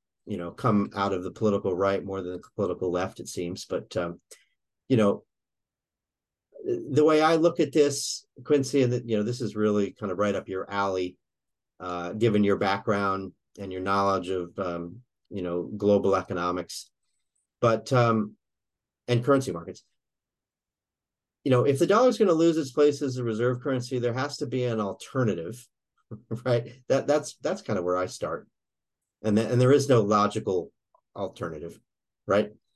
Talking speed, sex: 170 wpm, male